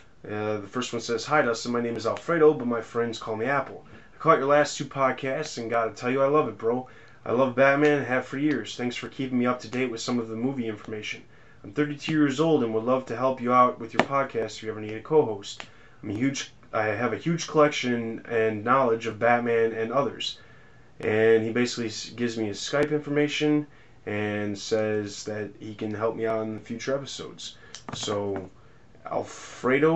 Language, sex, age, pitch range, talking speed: English, male, 20-39, 110-135 Hz, 210 wpm